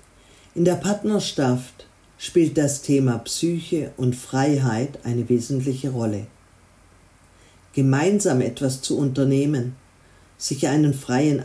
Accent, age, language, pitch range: German, 50-69, German, 115-160 Hz